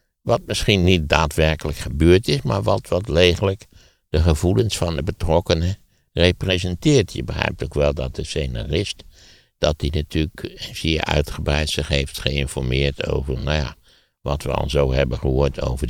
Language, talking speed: Dutch, 155 wpm